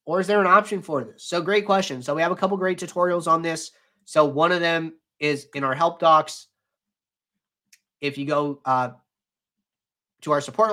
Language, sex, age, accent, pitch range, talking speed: English, male, 30-49, American, 140-180 Hz, 195 wpm